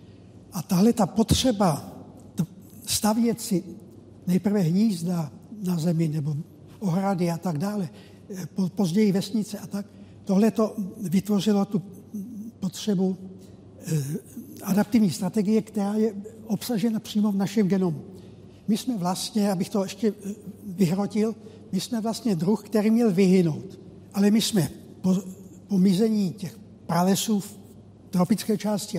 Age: 60-79